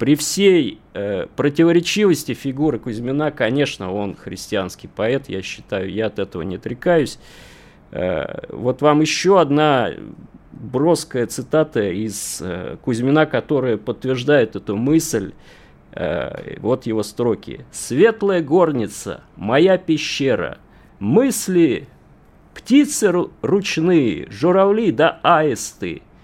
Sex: male